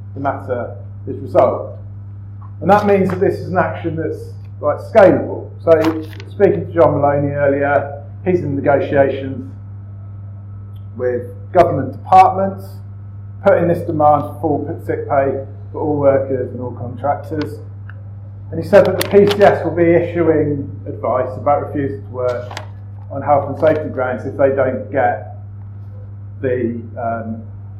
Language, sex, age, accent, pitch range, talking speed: English, male, 40-59, British, 100-140 Hz, 140 wpm